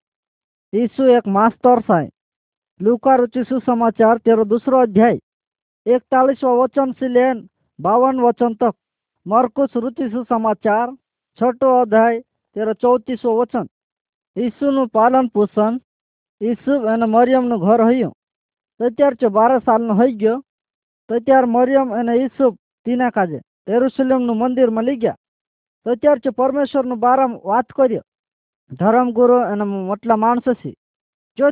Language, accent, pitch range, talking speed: English, Indian, 225-260 Hz, 80 wpm